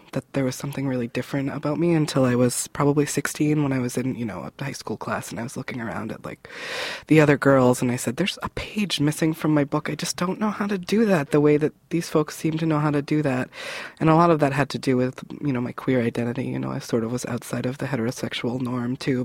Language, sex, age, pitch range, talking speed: English, female, 20-39, 125-150 Hz, 280 wpm